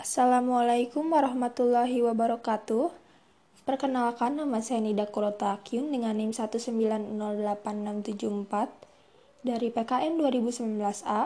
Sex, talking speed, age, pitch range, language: female, 75 wpm, 10-29, 220-250 Hz, Indonesian